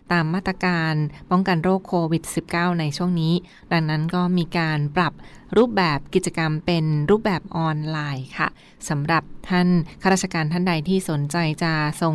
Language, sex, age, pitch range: Thai, female, 20-39, 160-190 Hz